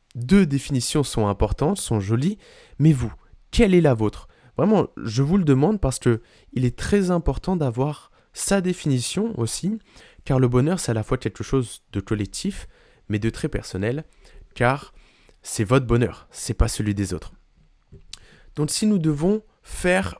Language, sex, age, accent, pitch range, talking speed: French, male, 20-39, French, 115-150 Hz, 165 wpm